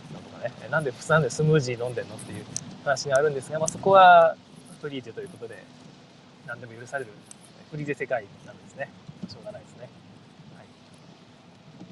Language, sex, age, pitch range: Japanese, male, 20-39, 155-190 Hz